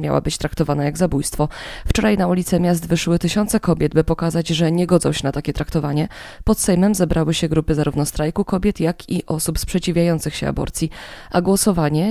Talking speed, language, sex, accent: 185 wpm, Polish, female, native